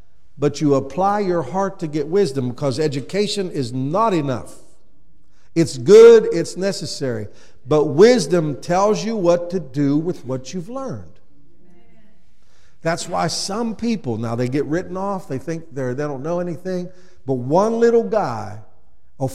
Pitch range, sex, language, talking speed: 135-195 Hz, male, English, 150 wpm